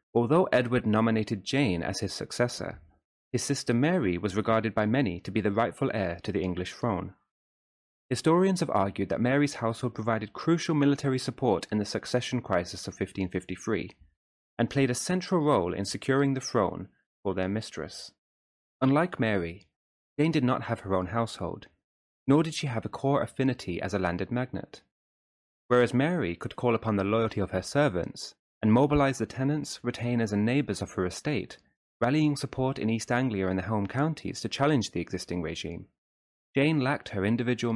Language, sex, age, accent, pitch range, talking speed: English, male, 30-49, British, 95-135 Hz, 170 wpm